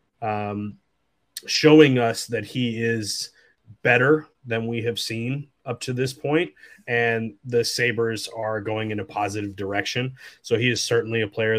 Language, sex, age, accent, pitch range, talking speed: English, male, 30-49, American, 110-125 Hz, 155 wpm